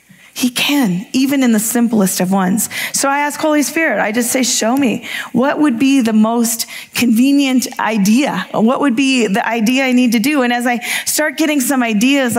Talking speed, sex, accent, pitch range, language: 200 wpm, female, American, 225-270 Hz, English